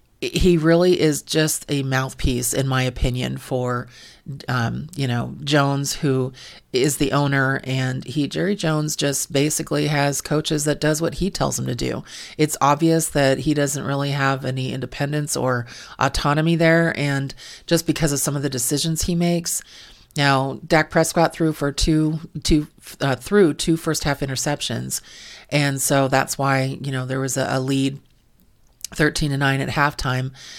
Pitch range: 135-155 Hz